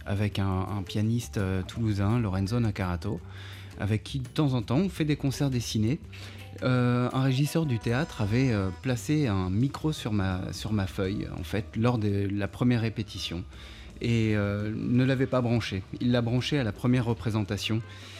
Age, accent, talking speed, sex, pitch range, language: 30-49, French, 180 wpm, male, 100-125 Hz, French